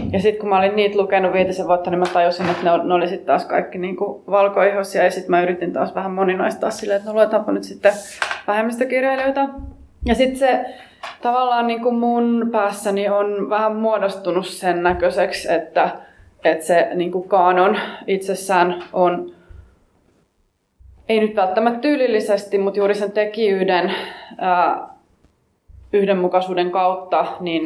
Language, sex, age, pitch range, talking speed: Finnish, female, 20-39, 180-215 Hz, 135 wpm